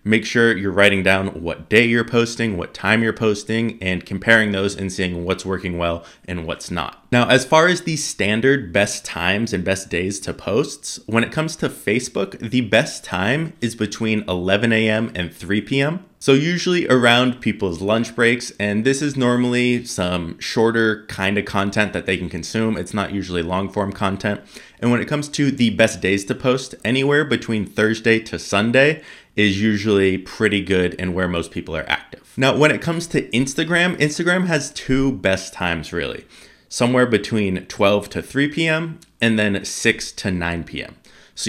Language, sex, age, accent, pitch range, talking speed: English, male, 20-39, American, 95-125 Hz, 185 wpm